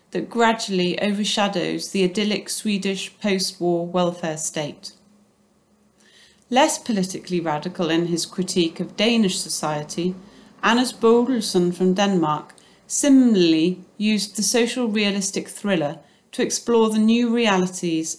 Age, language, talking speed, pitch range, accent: 30-49, English, 110 wpm, 175-220 Hz, British